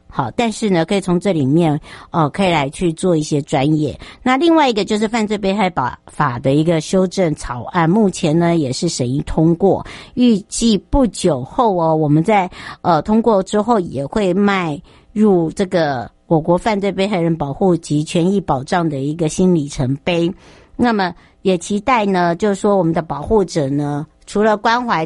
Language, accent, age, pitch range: Chinese, American, 50-69, 155-205 Hz